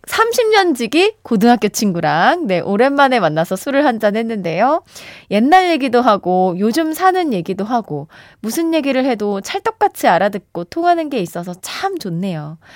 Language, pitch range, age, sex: Korean, 185-270 Hz, 20-39, female